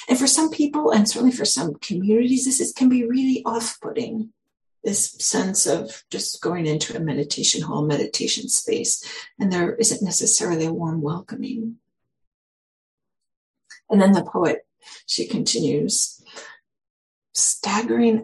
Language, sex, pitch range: English, female, 175-245 Hz